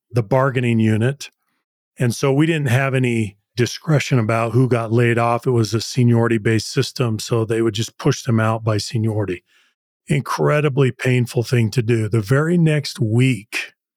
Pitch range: 115-135 Hz